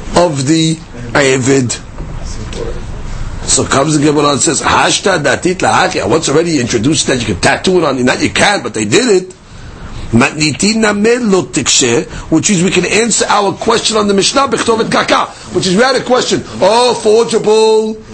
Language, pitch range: English, 175-230 Hz